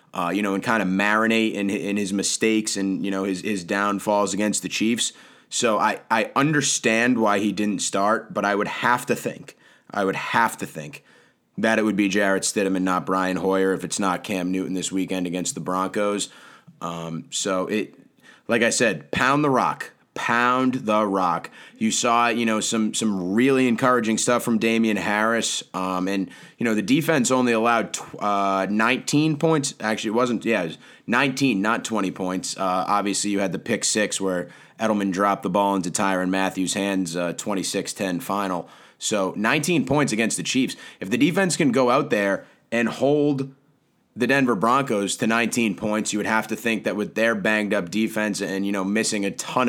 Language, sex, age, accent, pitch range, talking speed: English, male, 20-39, American, 95-120 Hz, 195 wpm